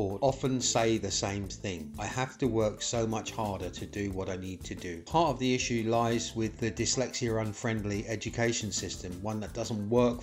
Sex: male